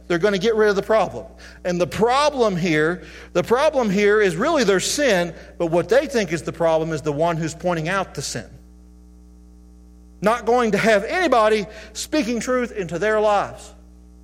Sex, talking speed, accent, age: male, 185 wpm, American, 40-59